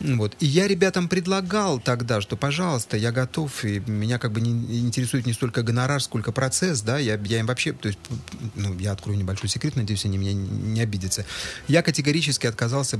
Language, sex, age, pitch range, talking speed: Russian, male, 30-49, 105-140 Hz, 190 wpm